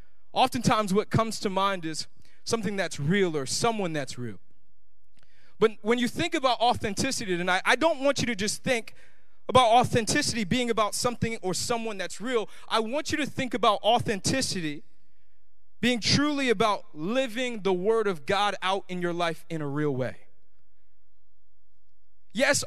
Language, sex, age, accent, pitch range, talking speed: English, male, 20-39, American, 165-250 Hz, 160 wpm